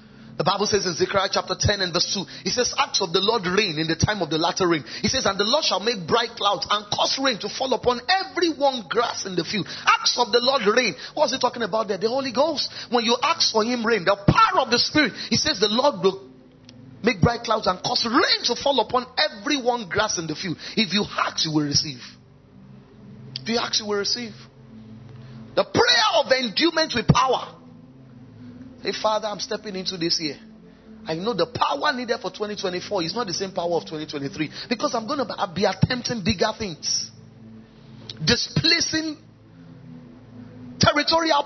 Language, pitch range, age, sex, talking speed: English, 170-260 Hz, 30-49, male, 200 wpm